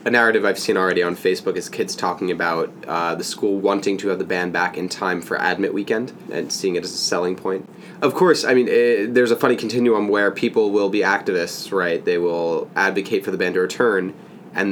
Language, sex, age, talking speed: English, male, 20-39, 230 wpm